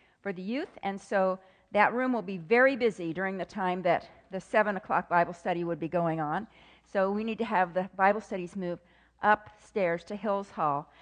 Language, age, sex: English, 50-69, female